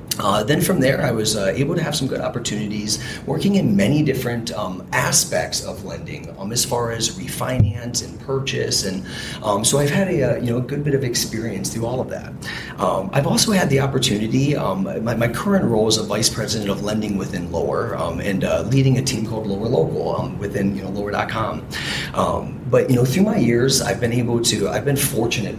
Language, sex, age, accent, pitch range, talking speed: English, male, 30-49, American, 110-135 Hz, 220 wpm